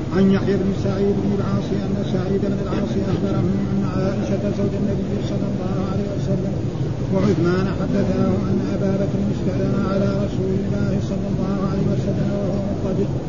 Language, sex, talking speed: Arabic, male, 140 wpm